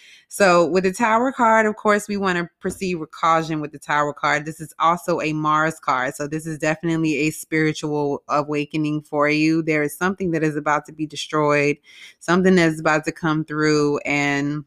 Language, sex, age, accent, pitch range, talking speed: English, female, 20-39, American, 150-170 Hz, 195 wpm